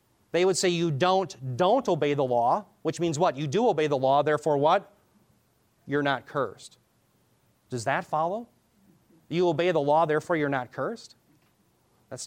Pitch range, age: 130-175 Hz, 30-49